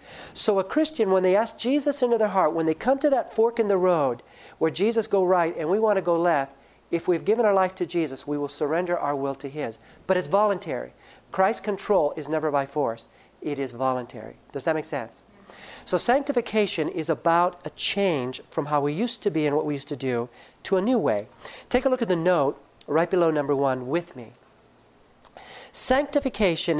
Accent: American